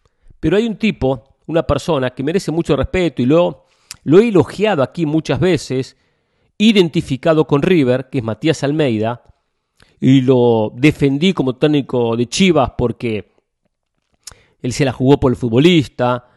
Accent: Argentinian